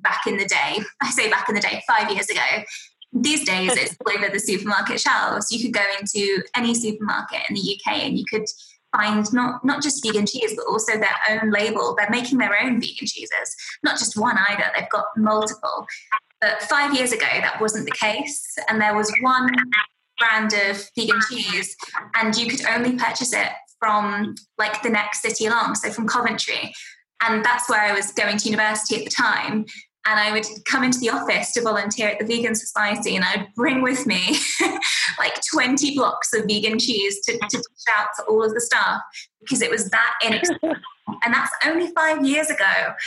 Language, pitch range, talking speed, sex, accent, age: English, 215-260 Hz, 200 wpm, female, British, 20-39